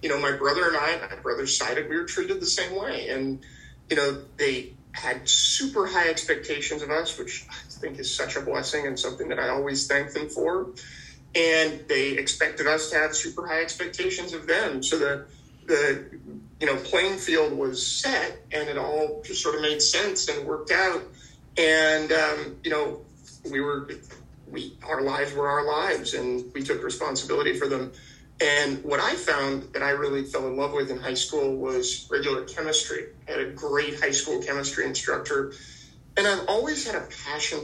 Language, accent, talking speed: English, American, 190 wpm